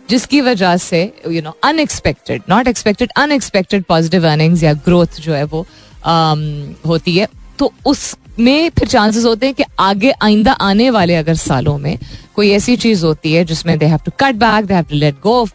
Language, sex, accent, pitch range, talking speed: Hindi, female, native, 170-240 Hz, 190 wpm